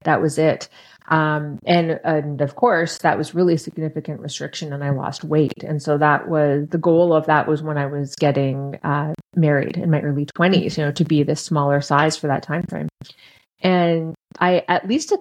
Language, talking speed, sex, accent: English, 210 wpm, female, American